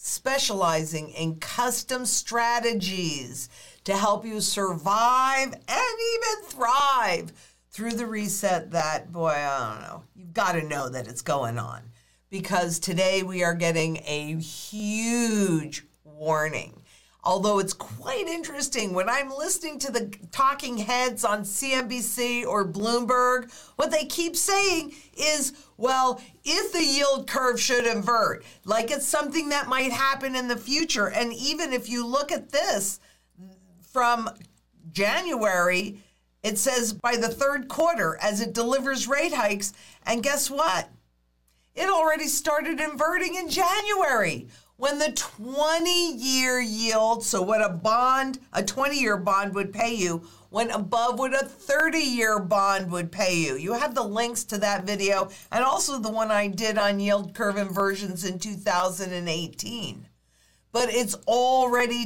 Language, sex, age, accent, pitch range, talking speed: English, female, 50-69, American, 195-270 Hz, 145 wpm